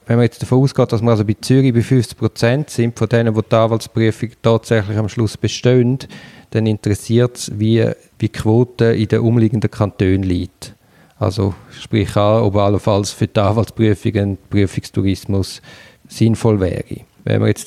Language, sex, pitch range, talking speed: German, male, 105-125 Hz, 155 wpm